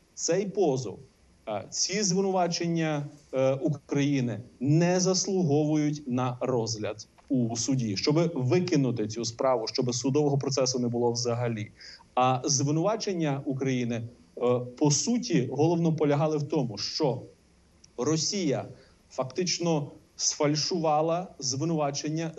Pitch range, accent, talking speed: 125-150 Hz, native, 100 wpm